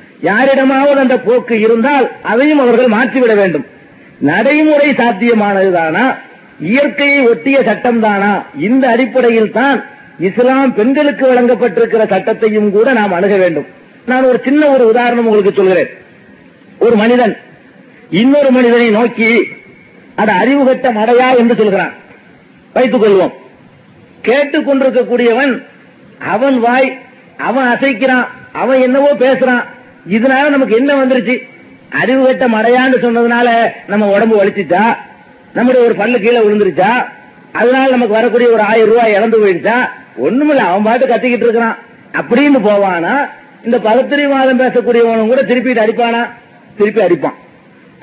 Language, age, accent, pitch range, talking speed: Tamil, 50-69, native, 220-260 Hz, 115 wpm